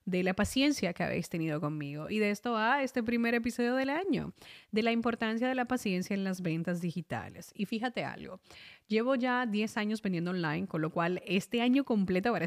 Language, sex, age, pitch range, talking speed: Spanish, female, 20-39, 175-210 Hz, 200 wpm